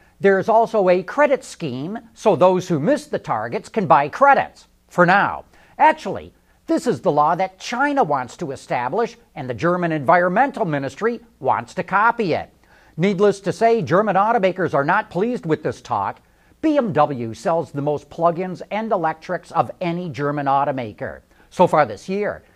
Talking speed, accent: 160 wpm, American